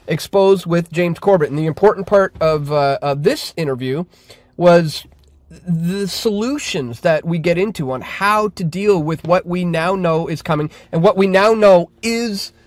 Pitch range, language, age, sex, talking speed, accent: 155-195 Hz, English, 30-49, male, 175 wpm, American